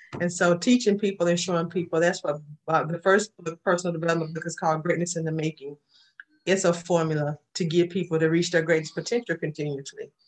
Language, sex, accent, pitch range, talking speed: English, female, American, 160-190 Hz, 195 wpm